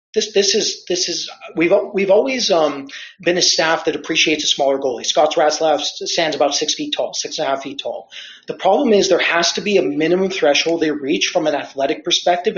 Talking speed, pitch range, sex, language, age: 220 wpm, 150-180 Hz, male, English, 30-49